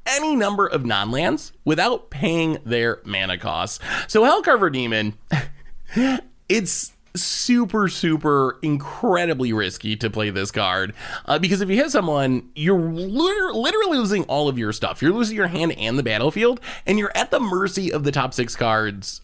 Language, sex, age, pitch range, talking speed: English, male, 30-49, 120-185 Hz, 160 wpm